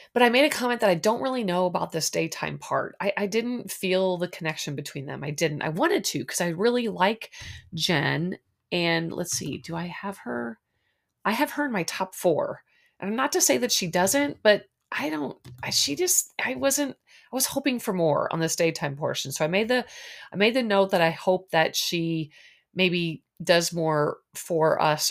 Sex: female